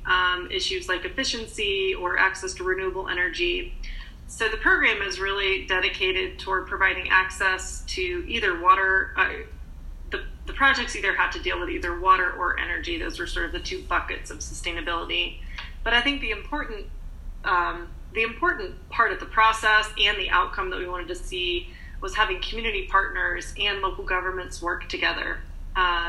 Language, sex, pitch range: English, female, 185-270 Hz